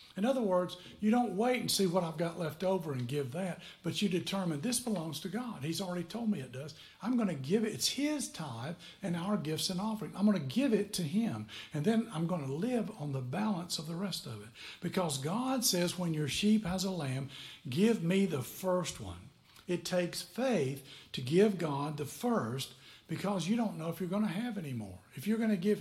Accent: American